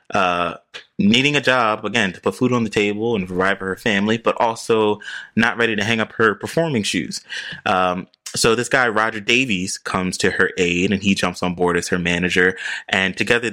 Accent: American